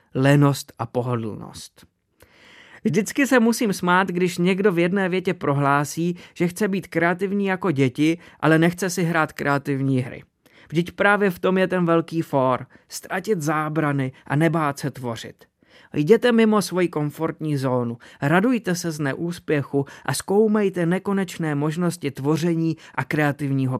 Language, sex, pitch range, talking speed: Czech, male, 140-180 Hz, 140 wpm